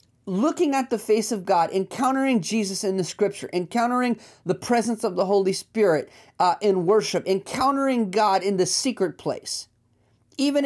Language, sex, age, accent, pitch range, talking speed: English, male, 40-59, American, 190-245 Hz, 160 wpm